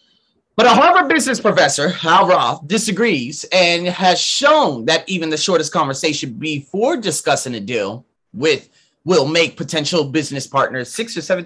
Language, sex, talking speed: English, male, 150 wpm